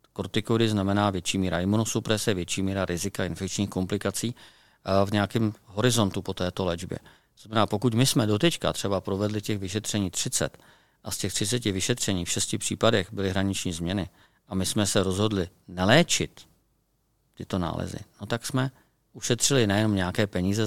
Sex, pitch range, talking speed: male, 95-115 Hz, 150 wpm